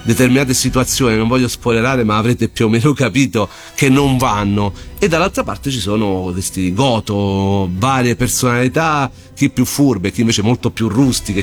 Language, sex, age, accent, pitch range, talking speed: Italian, male, 40-59, native, 100-130 Hz, 165 wpm